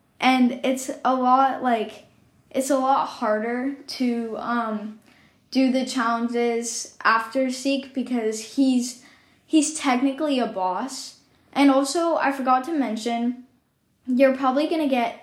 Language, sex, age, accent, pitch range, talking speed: English, female, 10-29, American, 230-275 Hz, 125 wpm